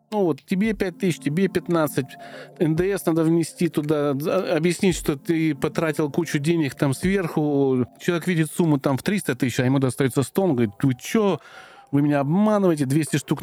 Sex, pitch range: male, 130-165 Hz